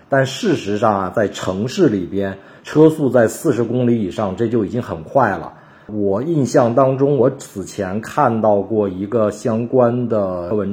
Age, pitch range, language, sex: 50-69, 100-135 Hz, Chinese, male